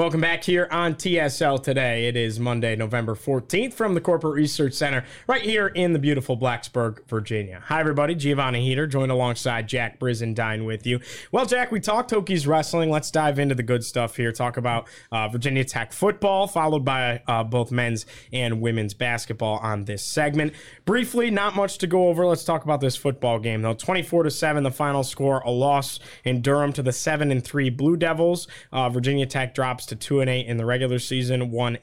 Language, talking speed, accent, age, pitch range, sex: English, 190 wpm, American, 20-39, 125-155 Hz, male